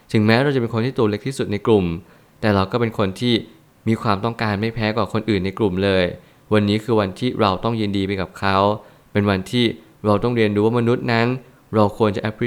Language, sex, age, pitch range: Thai, male, 20-39, 105-120 Hz